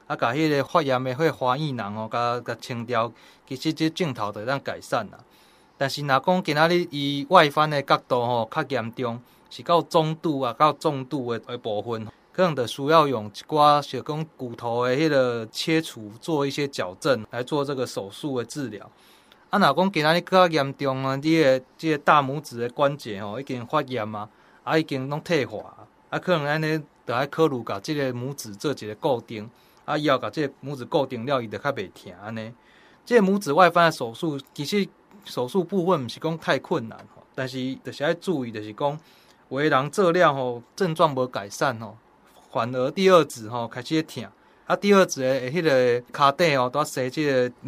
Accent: native